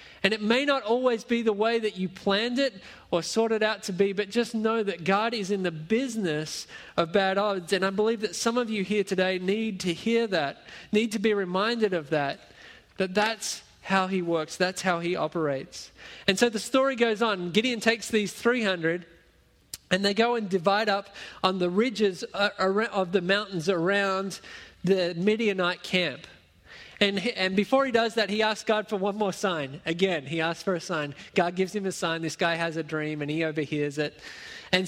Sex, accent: male, Australian